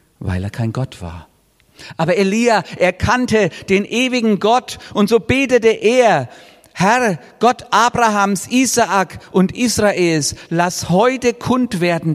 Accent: German